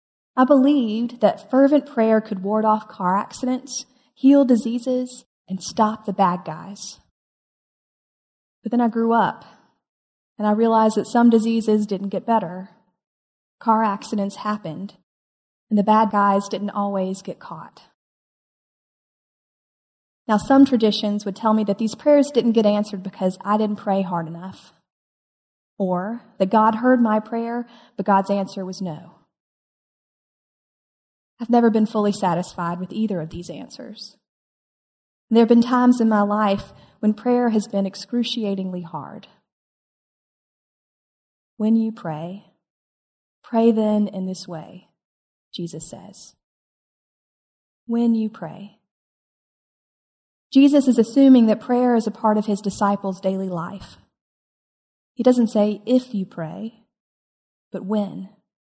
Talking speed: 130 wpm